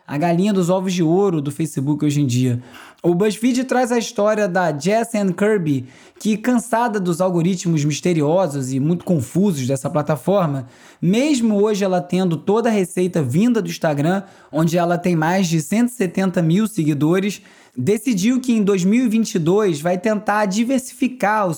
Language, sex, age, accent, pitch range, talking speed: Portuguese, male, 20-39, Brazilian, 160-220 Hz, 155 wpm